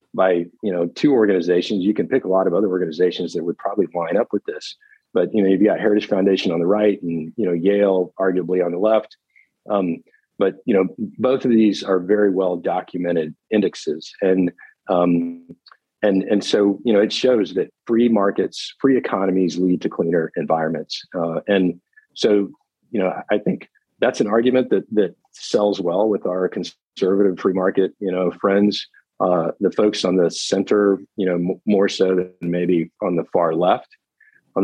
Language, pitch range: English, 90-105 Hz